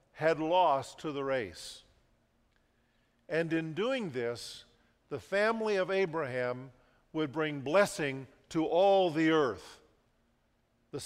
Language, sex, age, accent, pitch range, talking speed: English, male, 50-69, American, 130-185 Hz, 115 wpm